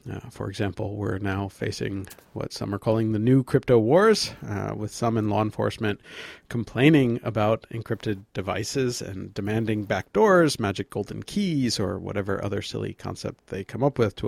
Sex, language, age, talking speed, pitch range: male, English, 50-69, 170 wpm, 100-125 Hz